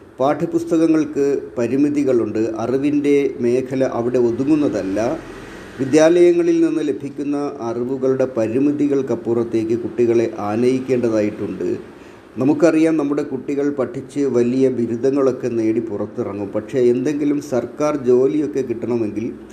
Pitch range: 120-145 Hz